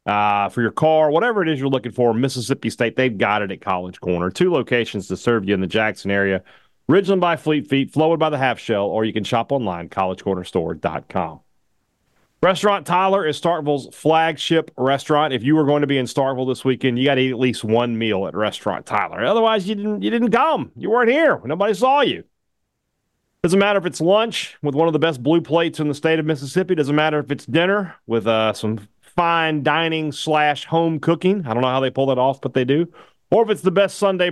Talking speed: 220 wpm